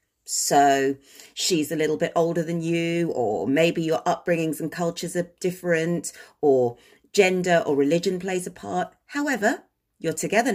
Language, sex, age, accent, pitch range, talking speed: English, female, 40-59, British, 160-245 Hz, 150 wpm